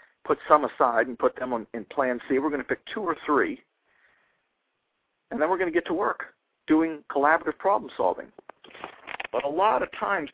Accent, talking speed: American, 195 wpm